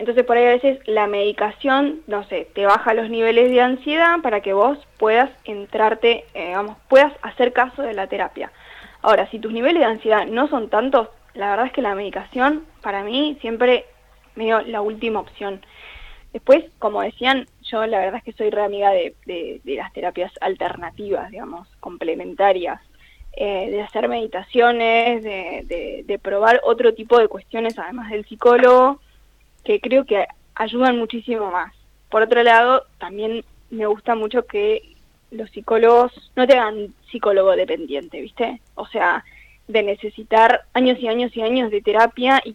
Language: Spanish